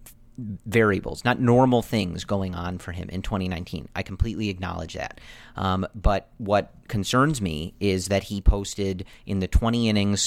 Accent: American